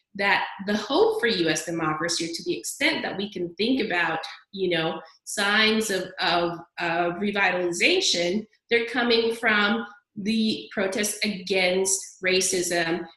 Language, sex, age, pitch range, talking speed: English, female, 30-49, 175-225 Hz, 130 wpm